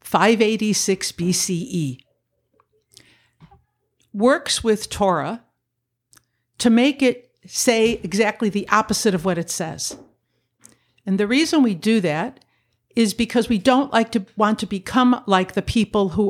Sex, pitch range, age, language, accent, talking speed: female, 170-230 Hz, 60-79, English, American, 130 wpm